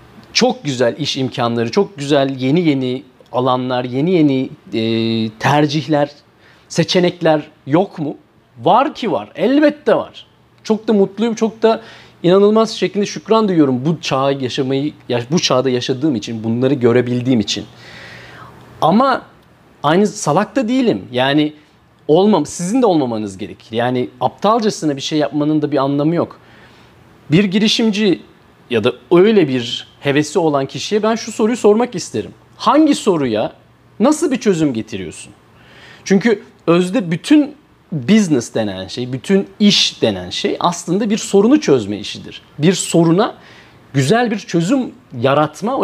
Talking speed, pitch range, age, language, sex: 130 wpm, 130-210 Hz, 40-59, Turkish, male